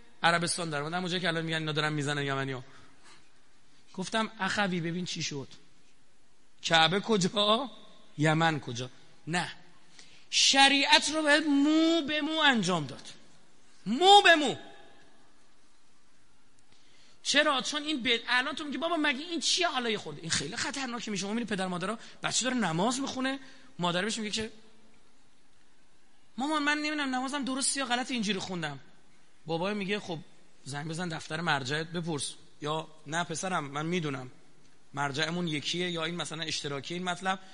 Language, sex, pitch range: Persian, male, 160-240 Hz